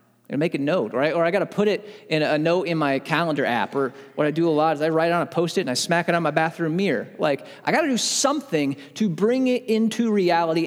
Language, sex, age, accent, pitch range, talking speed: English, male, 30-49, American, 130-180 Hz, 290 wpm